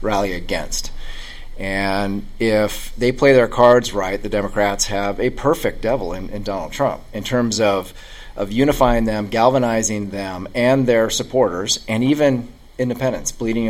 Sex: male